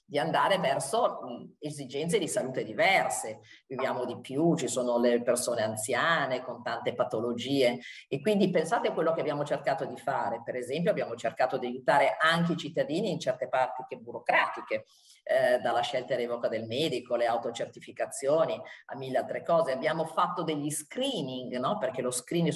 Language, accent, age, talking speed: Italian, native, 40-59, 165 wpm